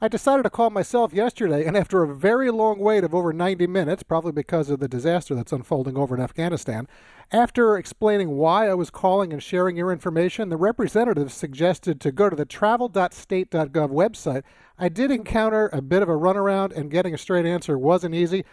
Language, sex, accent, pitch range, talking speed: English, male, American, 145-195 Hz, 195 wpm